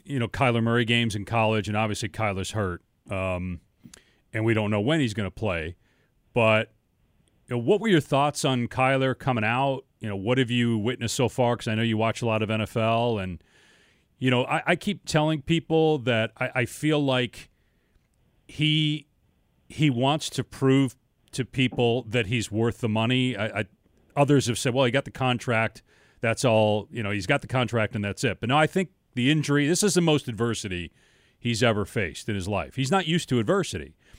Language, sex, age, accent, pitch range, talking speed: English, male, 40-59, American, 105-135 Hz, 205 wpm